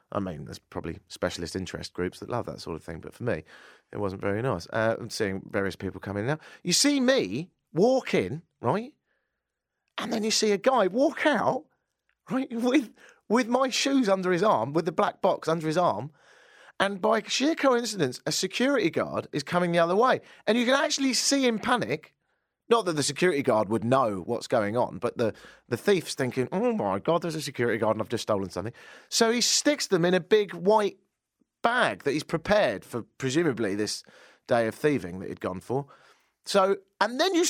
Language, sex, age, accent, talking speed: English, male, 30-49, British, 205 wpm